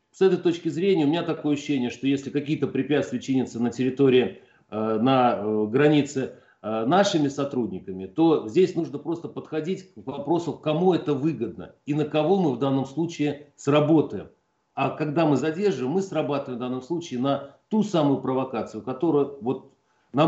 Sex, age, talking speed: male, 40-59, 155 wpm